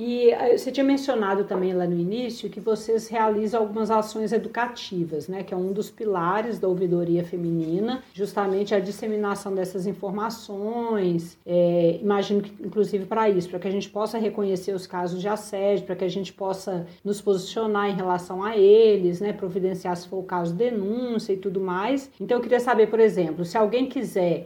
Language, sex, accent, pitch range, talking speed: Portuguese, female, Brazilian, 185-220 Hz, 180 wpm